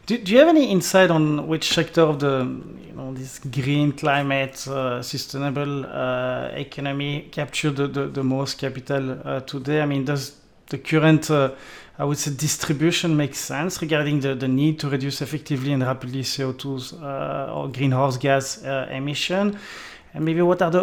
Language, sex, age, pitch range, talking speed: English, male, 30-49, 135-155 Hz, 175 wpm